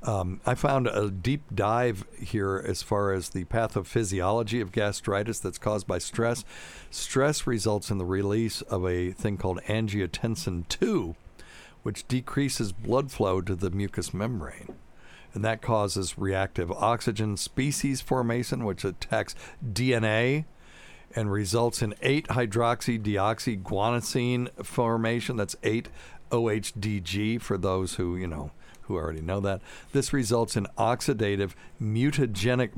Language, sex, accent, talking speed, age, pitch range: English, male, American, 125 wpm, 60-79, 90-115 Hz